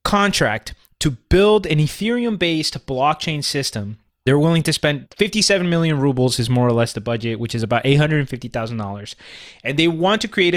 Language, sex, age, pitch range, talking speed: English, male, 20-39, 125-160 Hz, 170 wpm